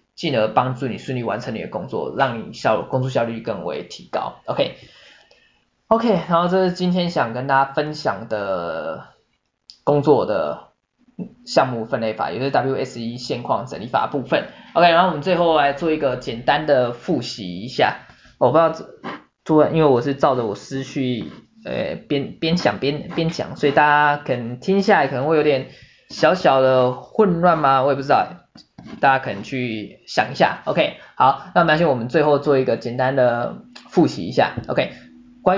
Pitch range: 125-170 Hz